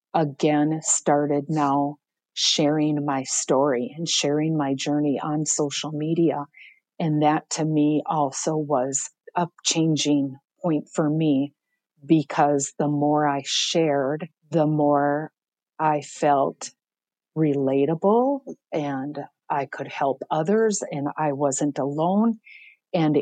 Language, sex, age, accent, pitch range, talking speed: English, female, 50-69, American, 145-165 Hz, 115 wpm